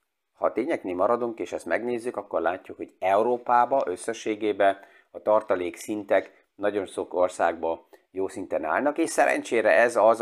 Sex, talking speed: male, 145 wpm